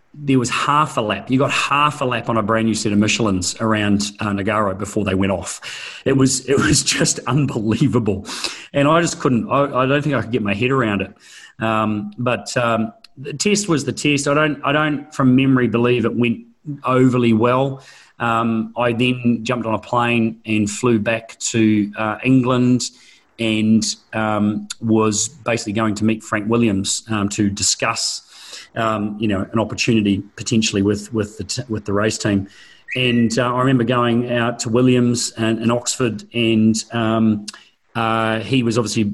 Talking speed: 185 wpm